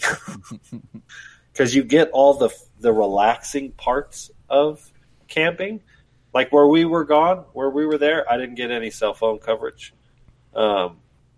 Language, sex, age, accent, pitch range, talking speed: English, male, 30-49, American, 105-145 Hz, 140 wpm